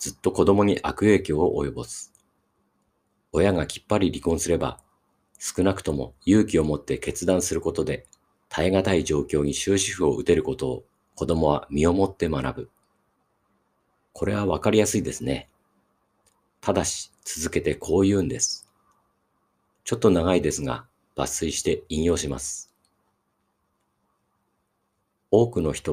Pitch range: 70-95 Hz